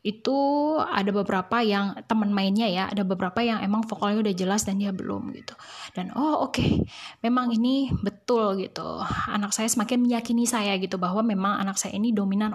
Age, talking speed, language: 10-29, 180 wpm, Indonesian